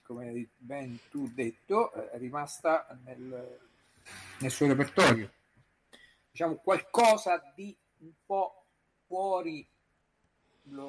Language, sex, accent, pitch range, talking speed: Italian, male, native, 115-145 Hz, 95 wpm